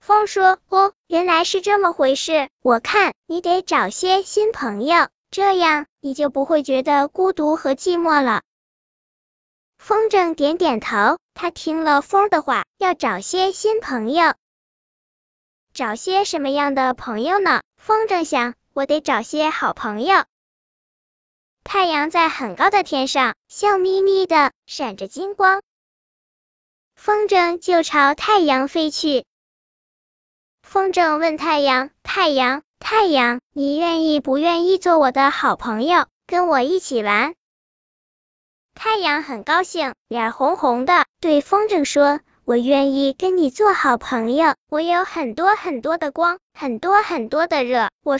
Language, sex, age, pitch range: Chinese, male, 10-29, 275-370 Hz